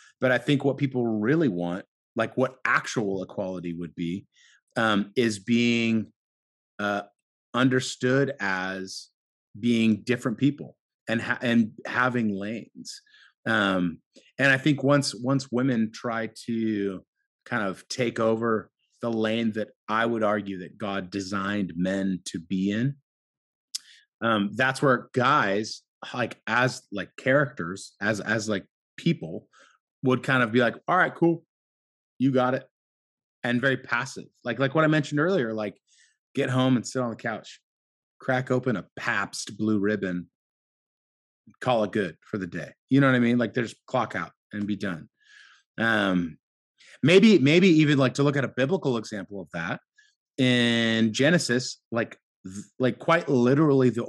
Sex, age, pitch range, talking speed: male, 30-49, 100-130 Hz, 150 wpm